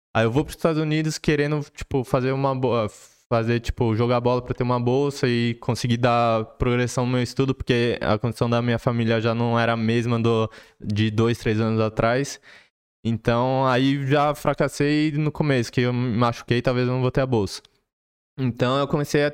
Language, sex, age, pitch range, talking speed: Portuguese, male, 20-39, 115-135 Hz, 200 wpm